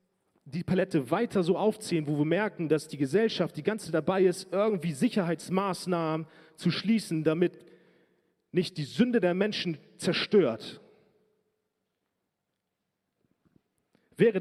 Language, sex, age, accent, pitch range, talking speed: German, male, 40-59, German, 150-190 Hz, 110 wpm